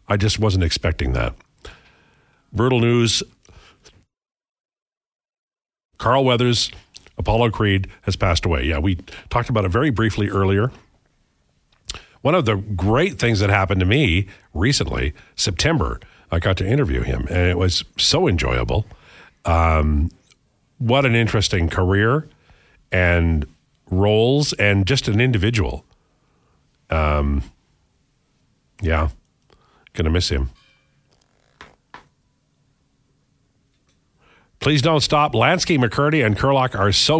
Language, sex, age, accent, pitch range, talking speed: English, male, 50-69, American, 90-125 Hz, 110 wpm